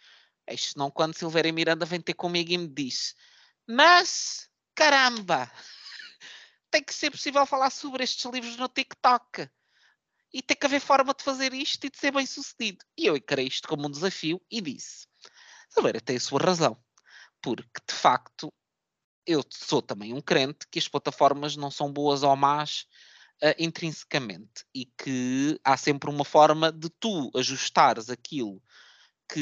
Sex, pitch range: male, 130-185 Hz